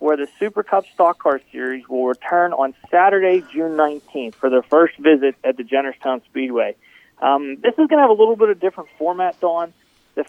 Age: 40-59